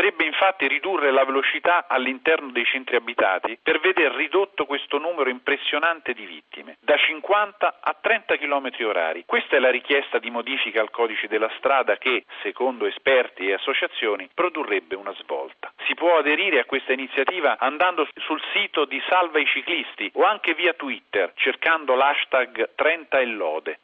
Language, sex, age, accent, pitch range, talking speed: Italian, male, 40-59, native, 130-185 Hz, 155 wpm